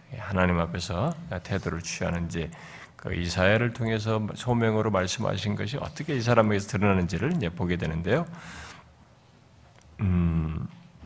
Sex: male